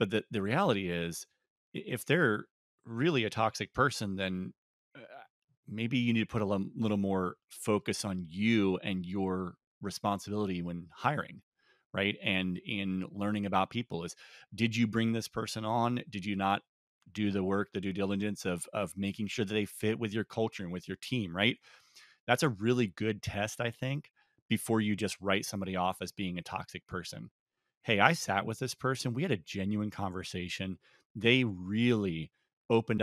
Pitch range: 95-115 Hz